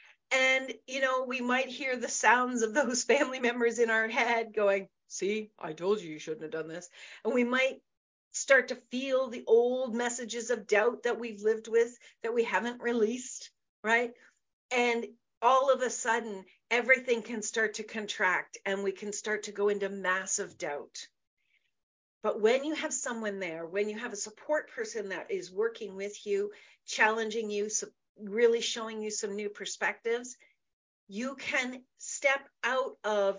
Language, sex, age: English, female, 40-59